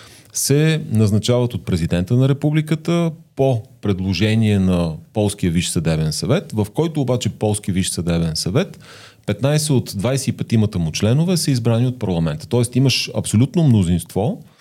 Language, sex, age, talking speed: Bulgarian, male, 40-59, 135 wpm